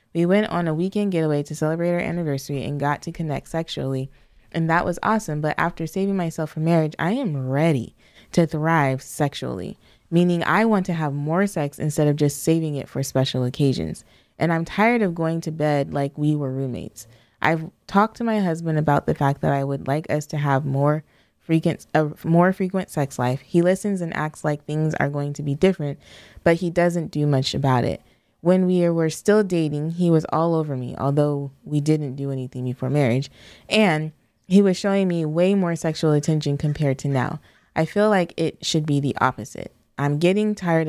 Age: 20-39